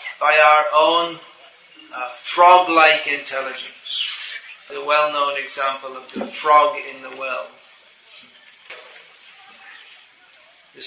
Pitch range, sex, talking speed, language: 135-160 Hz, male, 90 wpm, English